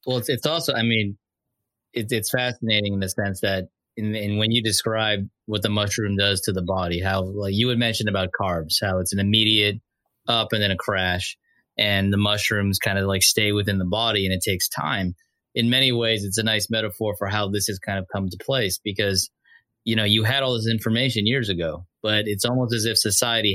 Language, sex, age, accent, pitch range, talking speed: English, male, 20-39, American, 95-110 Hz, 220 wpm